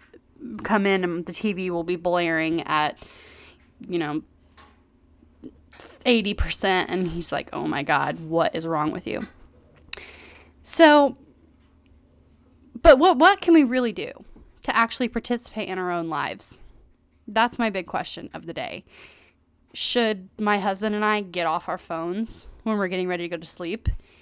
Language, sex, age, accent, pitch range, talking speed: English, female, 20-39, American, 170-220 Hz, 155 wpm